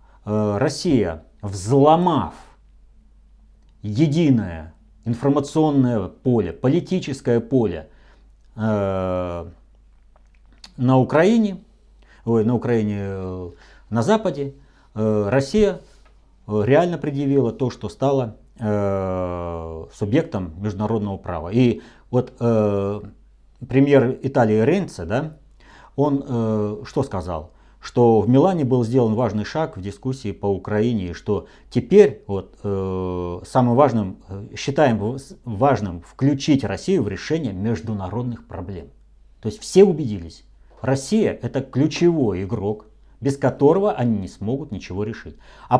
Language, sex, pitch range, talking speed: Russian, male, 95-135 Hz, 105 wpm